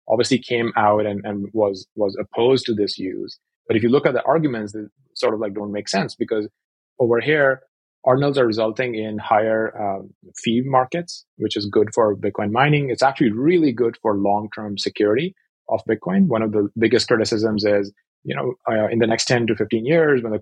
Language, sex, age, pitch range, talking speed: English, male, 30-49, 105-130 Hz, 205 wpm